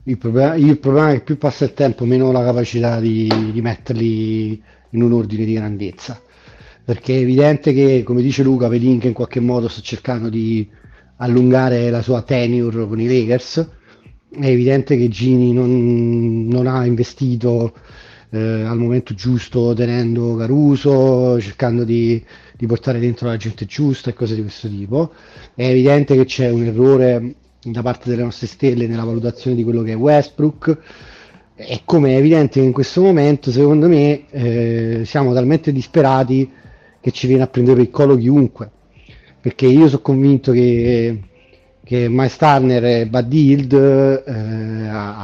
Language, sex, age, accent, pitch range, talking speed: Italian, male, 30-49, native, 115-135 Hz, 160 wpm